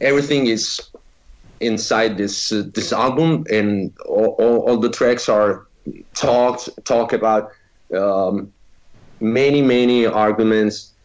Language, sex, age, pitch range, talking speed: English, male, 30-49, 95-120 Hz, 115 wpm